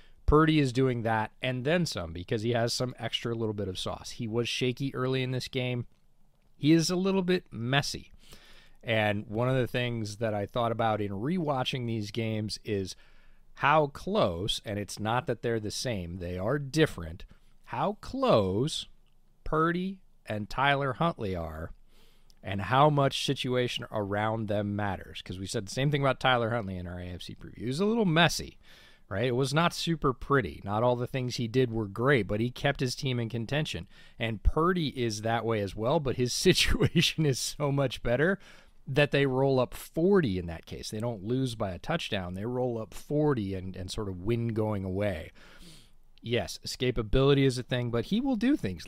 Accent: American